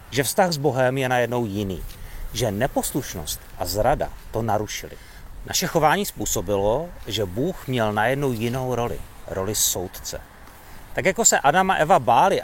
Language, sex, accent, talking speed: Czech, male, native, 150 wpm